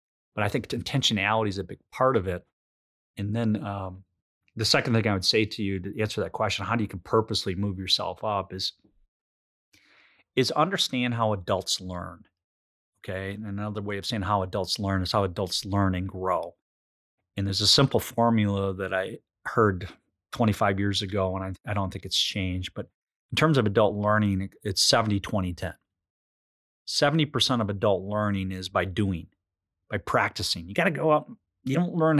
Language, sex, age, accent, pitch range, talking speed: English, male, 30-49, American, 95-125 Hz, 180 wpm